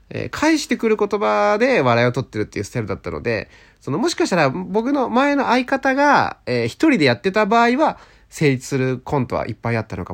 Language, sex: Japanese, male